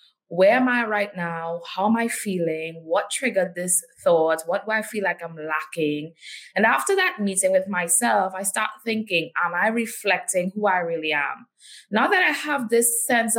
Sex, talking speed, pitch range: female, 190 wpm, 175-235 Hz